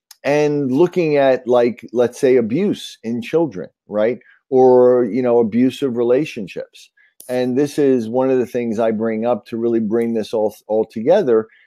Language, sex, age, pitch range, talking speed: Swedish, male, 50-69, 95-120 Hz, 165 wpm